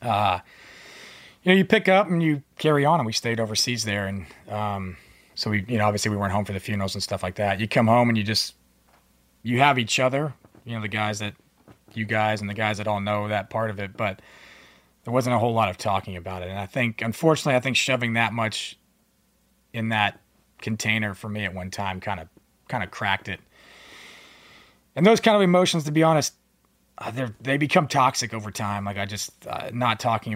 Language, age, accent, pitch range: English, 30-49, American, 100-120 Hz